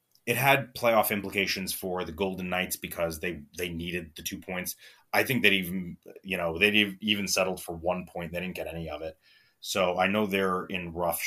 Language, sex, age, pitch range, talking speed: English, male, 30-49, 85-105 Hz, 210 wpm